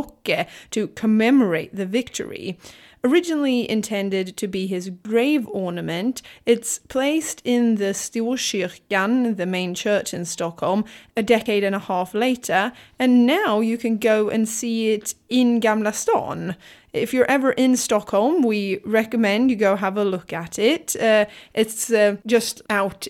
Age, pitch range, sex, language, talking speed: 20-39, 195-240 Hz, female, English, 150 wpm